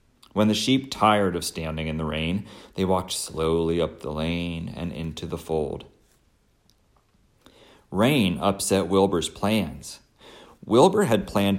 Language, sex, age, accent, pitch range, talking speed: English, male, 40-59, American, 95-125 Hz, 135 wpm